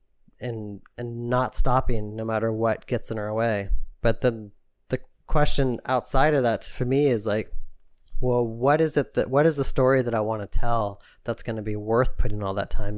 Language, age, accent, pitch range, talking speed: English, 20-39, American, 105-130 Hz, 210 wpm